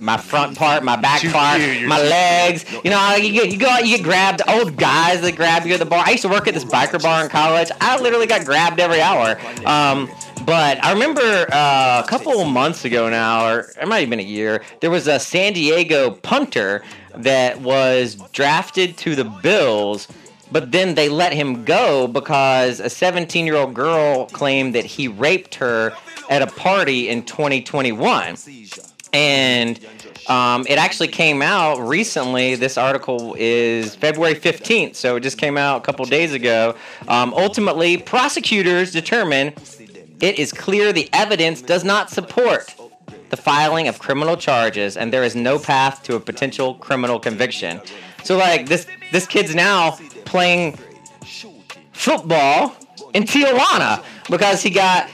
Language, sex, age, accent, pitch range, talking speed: English, male, 30-49, American, 130-185 Hz, 170 wpm